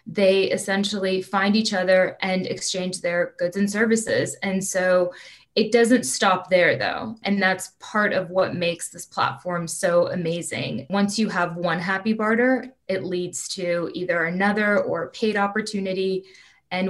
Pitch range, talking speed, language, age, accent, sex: 180-205 Hz, 155 wpm, English, 20-39, American, female